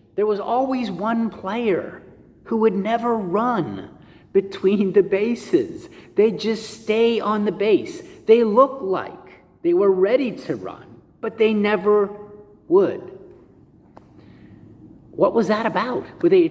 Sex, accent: male, American